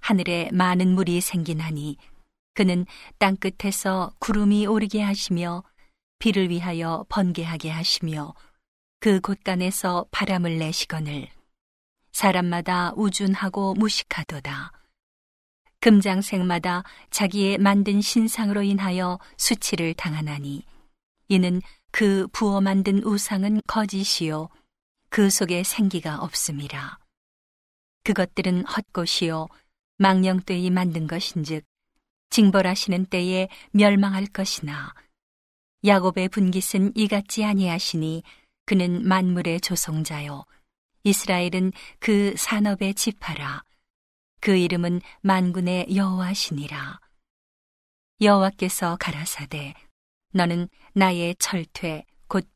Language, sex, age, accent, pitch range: Korean, female, 40-59, native, 175-200 Hz